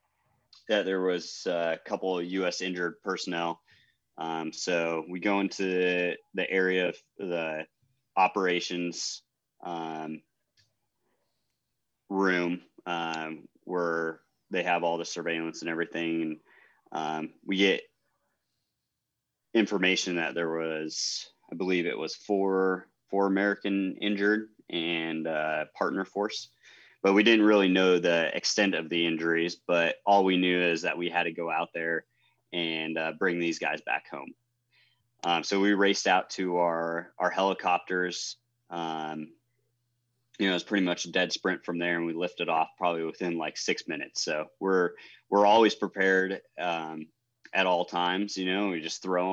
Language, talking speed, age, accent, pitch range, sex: English, 150 wpm, 30-49, American, 85-95 Hz, male